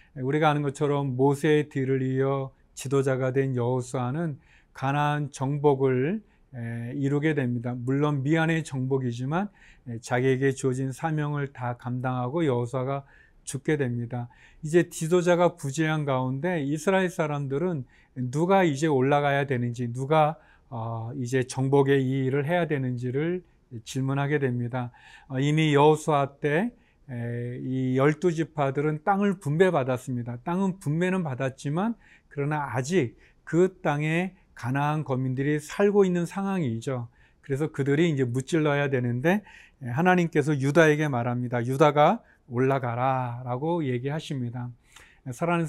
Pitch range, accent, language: 130-160 Hz, native, Korean